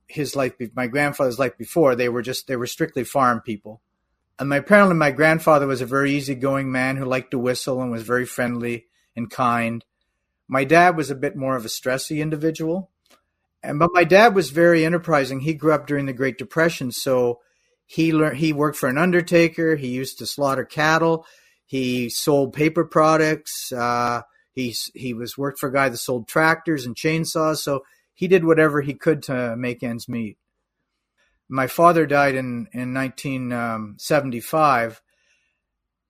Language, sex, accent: English, male, American